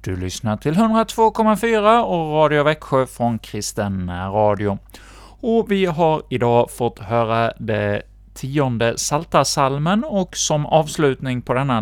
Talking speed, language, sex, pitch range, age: 125 wpm, Swedish, male, 105-145 Hz, 30-49